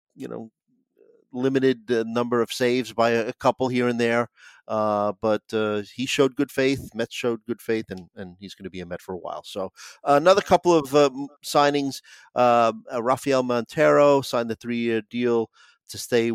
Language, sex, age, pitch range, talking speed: English, male, 40-59, 110-125 Hz, 190 wpm